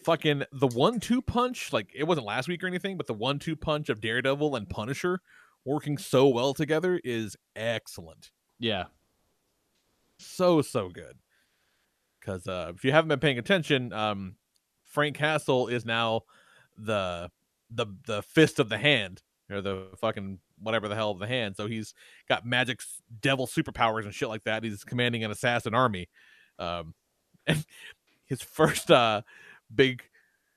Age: 30-49